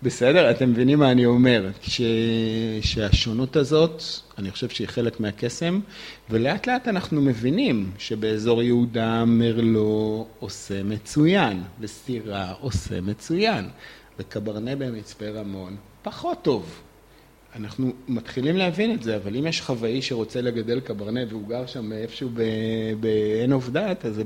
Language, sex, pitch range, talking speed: Hebrew, male, 100-125 Hz, 130 wpm